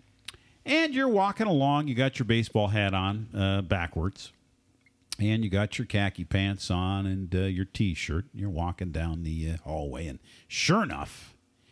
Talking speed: 165 wpm